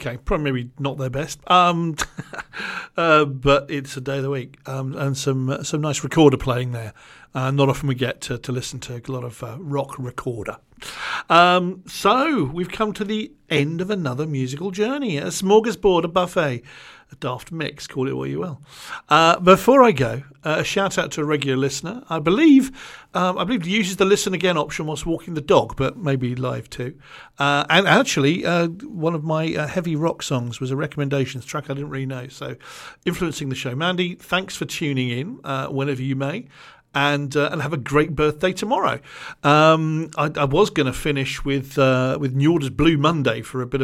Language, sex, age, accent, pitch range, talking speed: English, male, 50-69, British, 135-175 Hz, 200 wpm